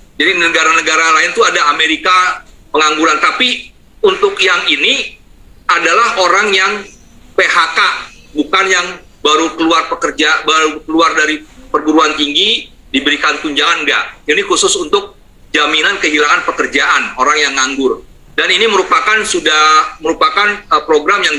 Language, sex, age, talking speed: Indonesian, male, 40-59, 125 wpm